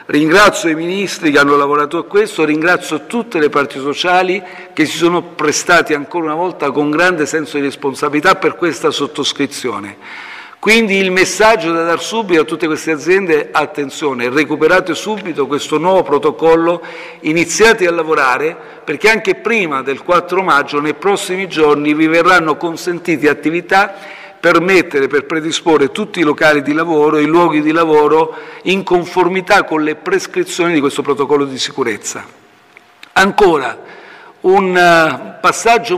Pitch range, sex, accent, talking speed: 150-185 Hz, male, native, 145 wpm